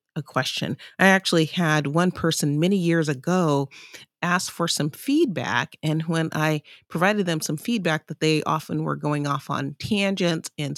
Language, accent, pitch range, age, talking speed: English, American, 150-185 Hz, 40-59, 165 wpm